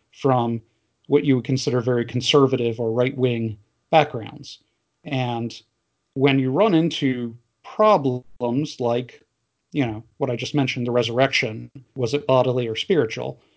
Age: 40-59